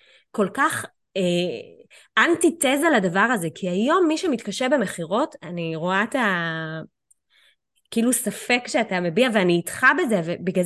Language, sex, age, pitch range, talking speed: Hebrew, female, 20-39, 185-260 Hz, 130 wpm